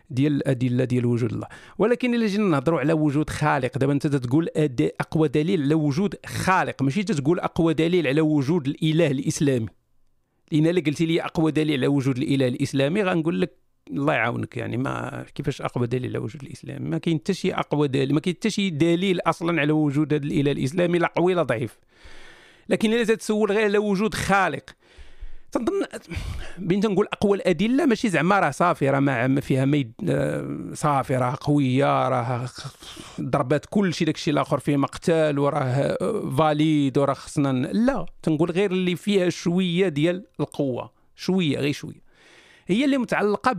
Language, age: Arabic, 50-69